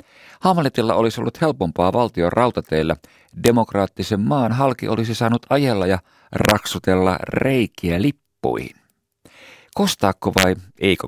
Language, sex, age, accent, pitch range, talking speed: Finnish, male, 50-69, native, 90-125 Hz, 105 wpm